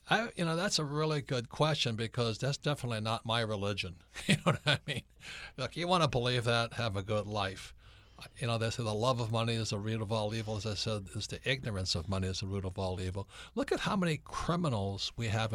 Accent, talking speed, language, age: American, 245 wpm, English, 60-79